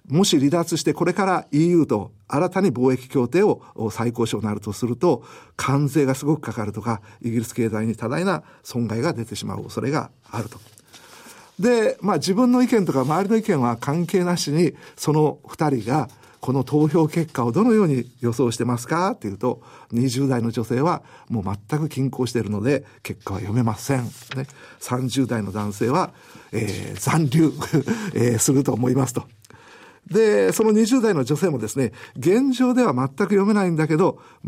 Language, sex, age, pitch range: Japanese, male, 50-69, 120-170 Hz